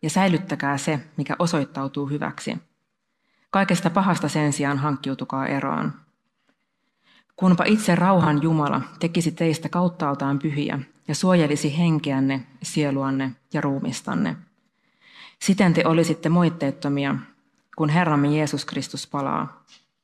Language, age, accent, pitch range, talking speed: Finnish, 30-49, native, 145-180 Hz, 105 wpm